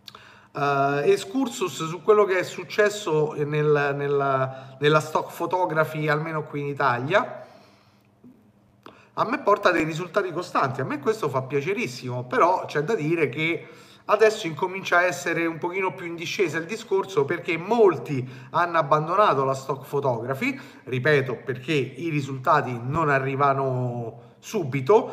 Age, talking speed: 30-49, 135 wpm